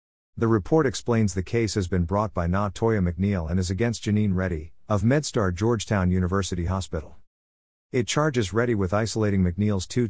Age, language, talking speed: 50-69, English, 165 wpm